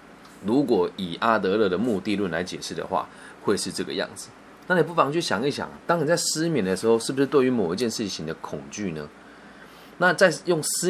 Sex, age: male, 20-39